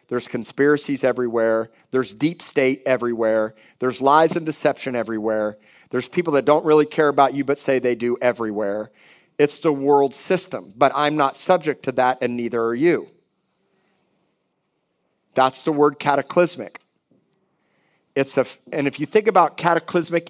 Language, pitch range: English, 130-155 Hz